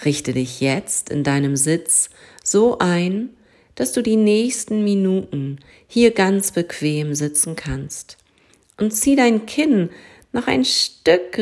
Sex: female